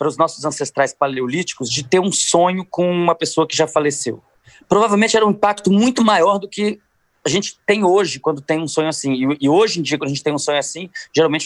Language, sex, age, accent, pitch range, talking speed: Portuguese, male, 20-39, Brazilian, 150-195 Hz, 235 wpm